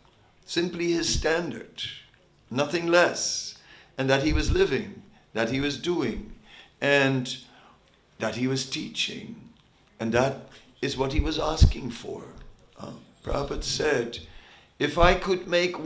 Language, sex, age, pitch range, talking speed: English, male, 60-79, 130-175 Hz, 130 wpm